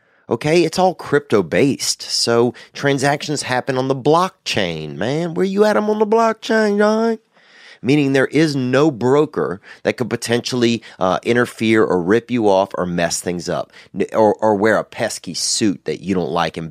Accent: American